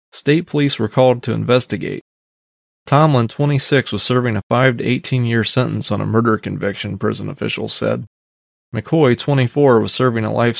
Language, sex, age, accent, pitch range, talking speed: English, male, 30-49, American, 110-130 Hz, 165 wpm